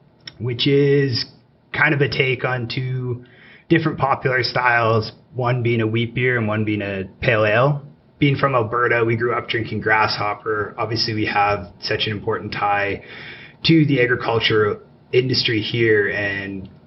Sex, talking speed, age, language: male, 155 wpm, 30-49, English